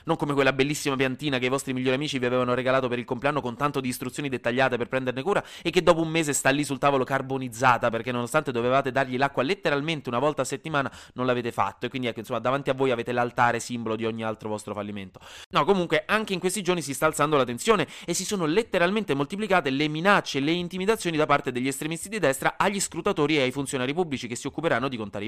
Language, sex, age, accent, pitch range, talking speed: Italian, male, 20-39, native, 120-170 Hz, 235 wpm